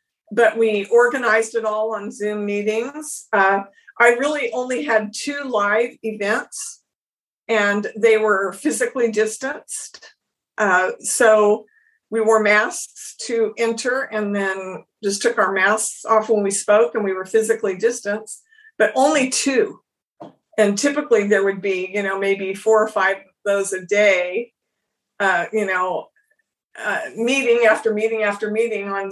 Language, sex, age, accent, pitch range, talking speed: English, female, 50-69, American, 205-245 Hz, 145 wpm